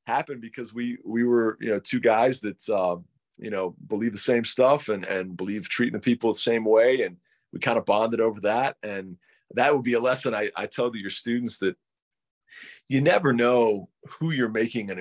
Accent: American